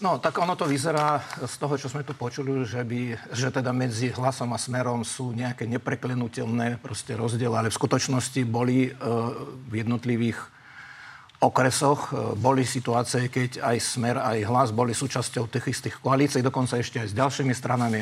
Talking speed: 170 wpm